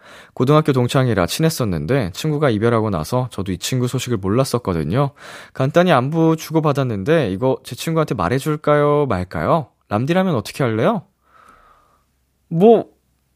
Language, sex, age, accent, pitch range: Korean, male, 20-39, native, 105-160 Hz